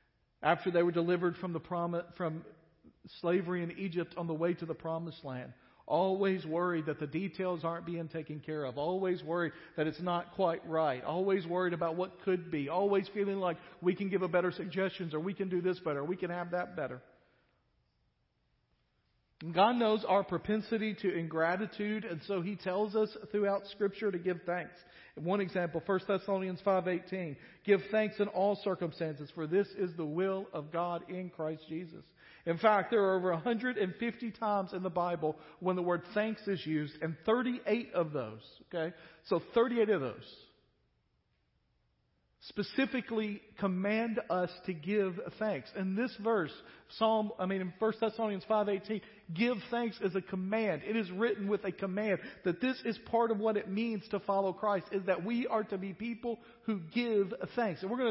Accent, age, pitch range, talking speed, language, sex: American, 50-69, 170-210 Hz, 180 wpm, English, male